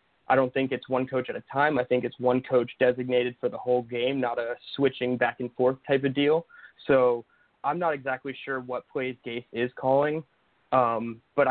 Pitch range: 125-140 Hz